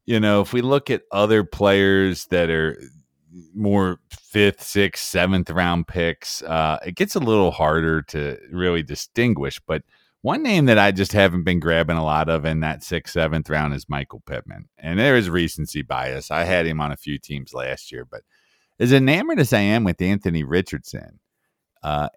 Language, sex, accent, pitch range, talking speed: English, male, American, 80-100 Hz, 185 wpm